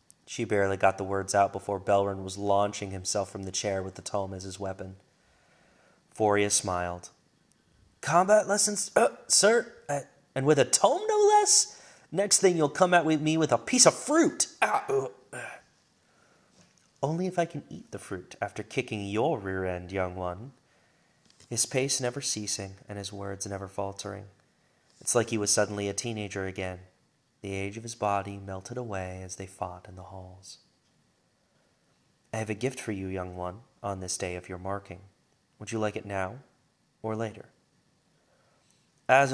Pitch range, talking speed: 95-125 Hz, 170 wpm